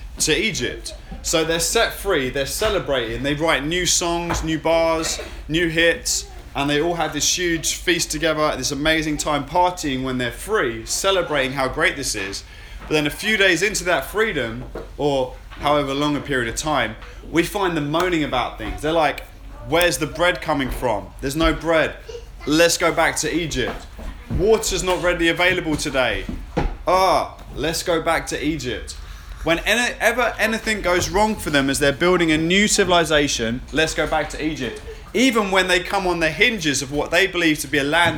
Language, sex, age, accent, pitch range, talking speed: English, male, 20-39, British, 140-180 Hz, 180 wpm